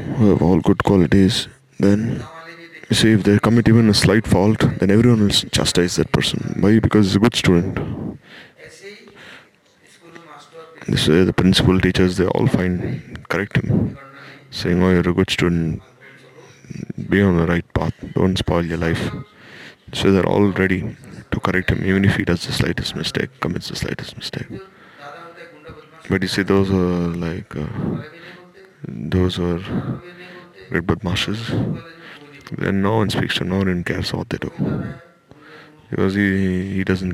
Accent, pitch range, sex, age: Indian, 90-130 Hz, male, 20-39